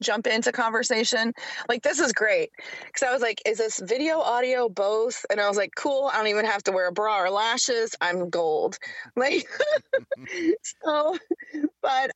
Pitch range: 190-245 Hz